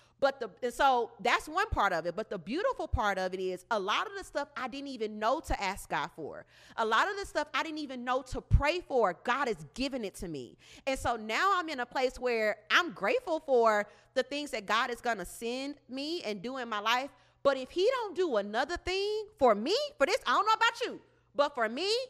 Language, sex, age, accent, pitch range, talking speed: English, female, 40-59, American, 225-315 Hz, 245 wpm